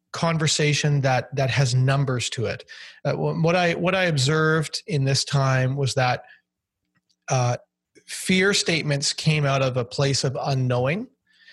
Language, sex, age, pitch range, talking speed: English, male, 30-49, 130-155 Hz, 145 wpm